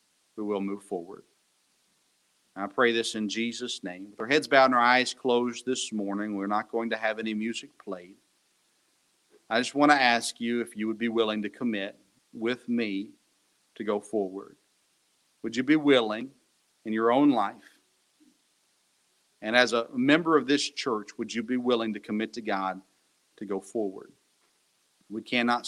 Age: 40-59